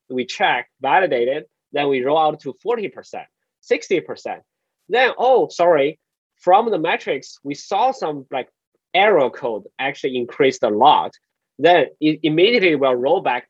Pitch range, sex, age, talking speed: 125-170 Hz, male, 20-39, 140 wpm